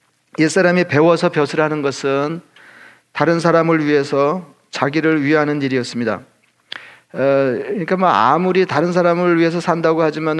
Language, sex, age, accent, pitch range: Korean, male, 40-59, native, 140-165 Hz